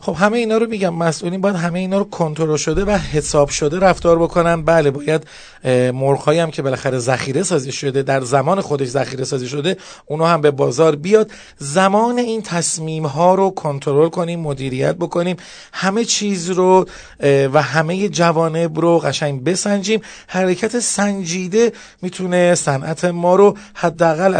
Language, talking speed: Persian, 150 wpm